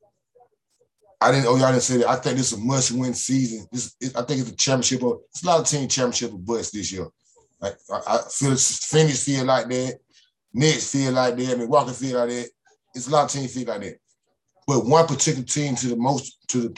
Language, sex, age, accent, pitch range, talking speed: English, male, 20-39, American, 105-140 Hz, 250 wpm